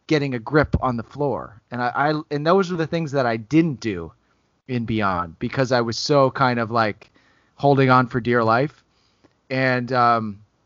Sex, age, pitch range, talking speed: male, 30-49, 110-140 Hz, 190 wpm